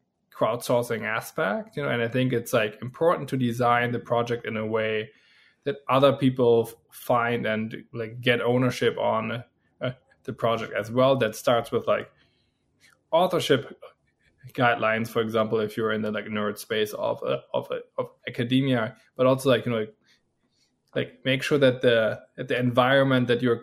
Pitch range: 115-130 Hz